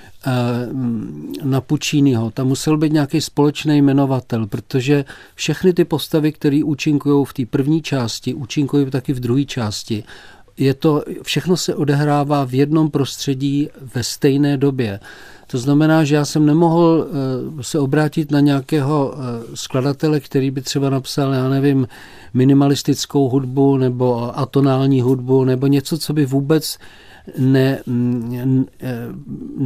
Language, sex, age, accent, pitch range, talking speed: Czech, male, 40-59, native, 130-150 Hz, 125 wpm